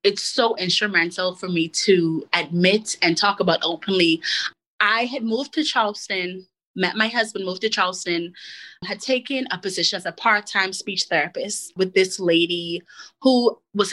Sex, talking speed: female, 155 wpm